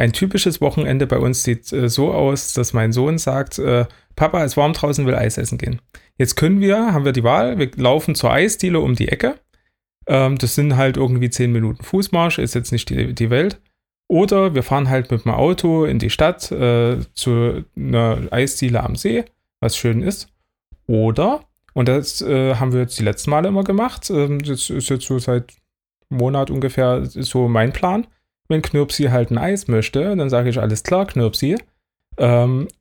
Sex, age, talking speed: male, 30-49, 190 wpm